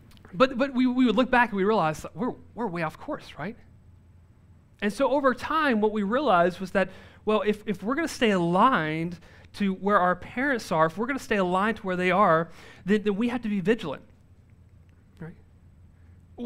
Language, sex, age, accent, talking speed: English, male, 30-49, American, 210 wpm